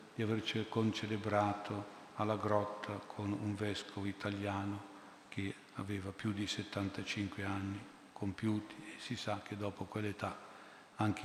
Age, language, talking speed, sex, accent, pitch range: 50-69, Italian, 125 wpm, male, native, 100-110 Hz